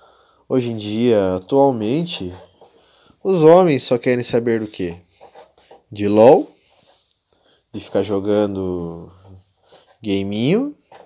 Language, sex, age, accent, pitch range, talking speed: Portuguese, male, 20-39, Brazilian, 105-145 Hz, 90 wpm